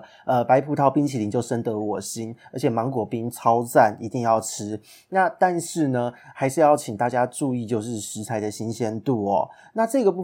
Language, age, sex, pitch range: Chinese, 30-49, male, 115-155 Hz